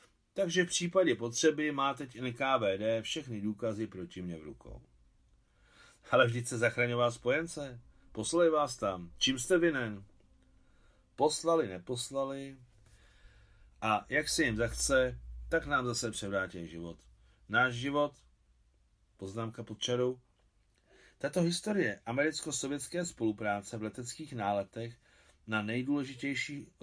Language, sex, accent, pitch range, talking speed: Czech, male, native, 100-130 Hz, 110 wpm